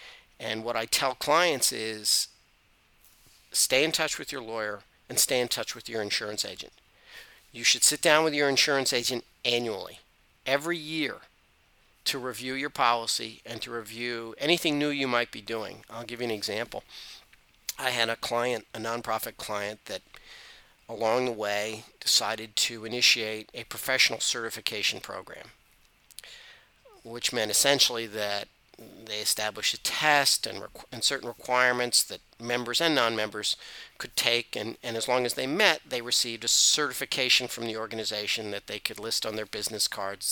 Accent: American